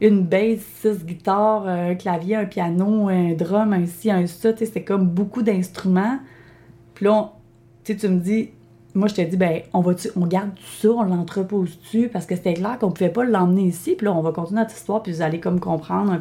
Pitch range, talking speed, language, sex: 160-205 Hz, 220 wpm, French, female